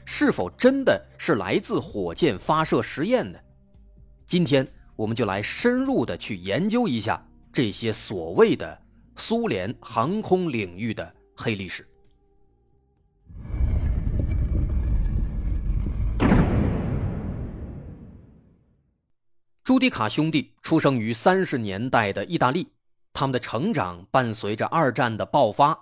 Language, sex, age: Chinese, male, 30-49